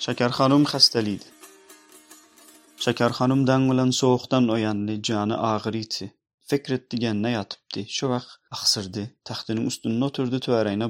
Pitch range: 105-125 Hz